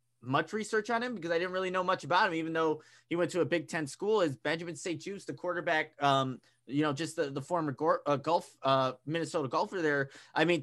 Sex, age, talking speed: male, 20-39, 230 wpm